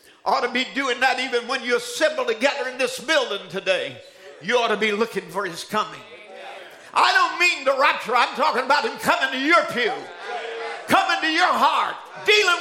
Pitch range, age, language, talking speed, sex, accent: 250-350 Hz, 50-69, English, 185 wpm, male, American